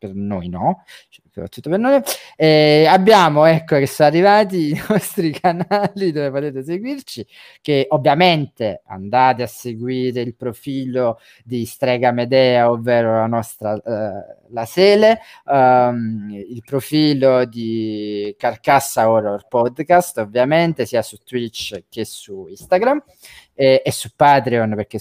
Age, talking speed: 20-39, 115 wpm